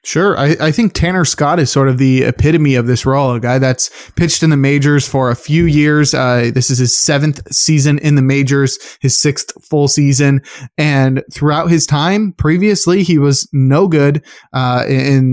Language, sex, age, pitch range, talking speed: English, male, 20-39, 135-155 Hz, 190 wpm